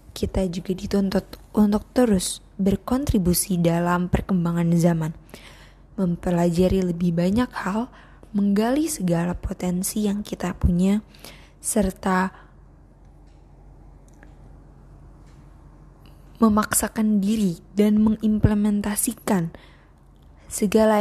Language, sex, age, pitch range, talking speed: Indonesian, female, 20-39, 180-210 Hz, 70 wpm